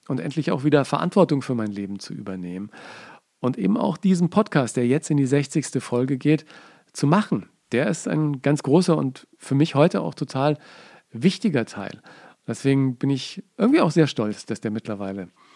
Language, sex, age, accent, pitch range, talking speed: German, male, 50-69, German, 135-175 Hz, 180 wpm